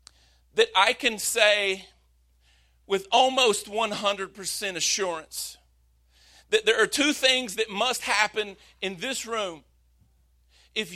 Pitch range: 170-240 Hz